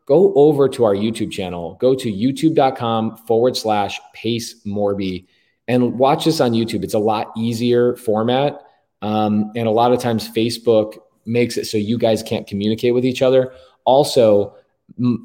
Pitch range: 105-135 Hz